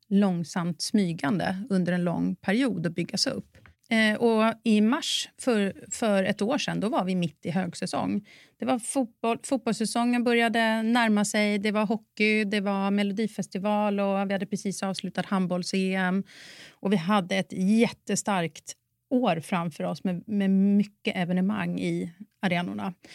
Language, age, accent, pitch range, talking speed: Swedish, 30-49, native, 185-225 Hz, 150 wpm